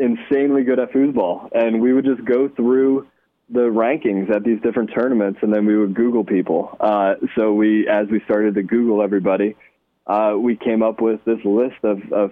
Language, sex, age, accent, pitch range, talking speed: English, male, 20-39, American, 100-115 Hz, 195 wpm